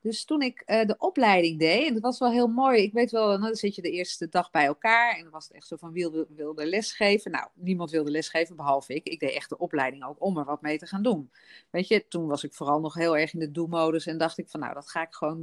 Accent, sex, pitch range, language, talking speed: Dutch, female, 155-205 Hz, Dutch, 290 wpm